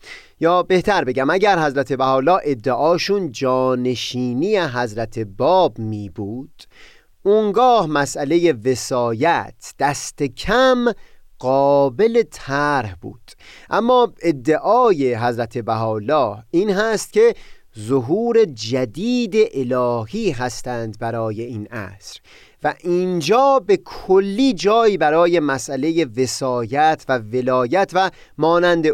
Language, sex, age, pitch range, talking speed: Persian, male, 30-49, 120-185 Hz, 95 wpm